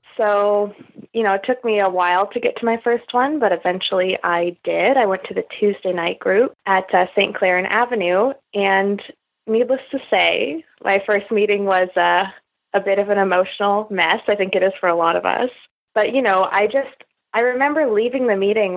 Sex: female